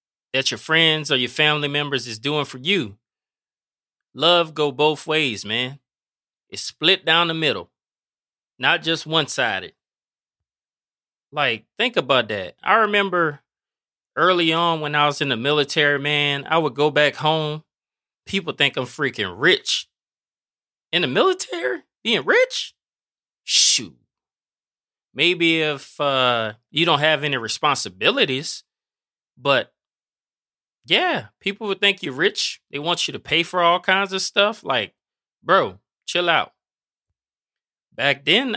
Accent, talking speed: American, 135 wpm